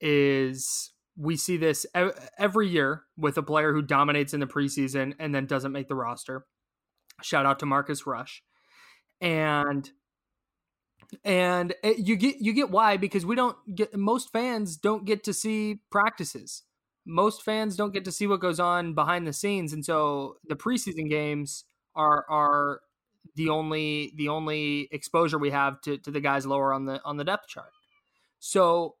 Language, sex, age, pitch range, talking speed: English, male, 20-39, 145-205 Hz, 170 wpm